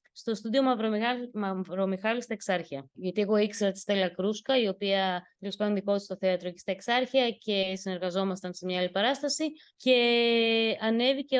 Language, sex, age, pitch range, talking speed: Greek, female, 20-39, 190-245 Hz, 145 wpm